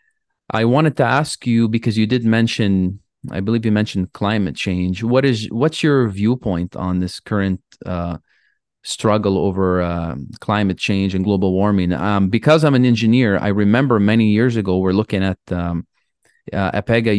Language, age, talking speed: English, 30-49, 170 wpm